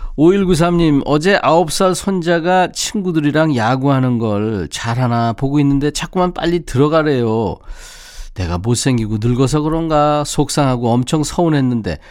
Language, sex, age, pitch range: Korean, male, 40-59, 110-160 Hz